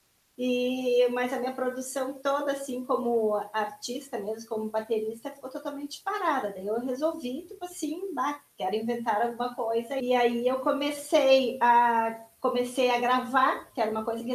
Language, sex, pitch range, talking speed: Portuguese, female, 225-285 Hz, 165 wpm